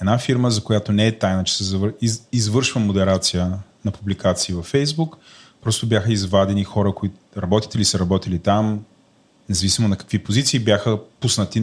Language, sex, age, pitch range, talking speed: Bulgarian, male, 30-49, 100-120 Hz, 170 wpm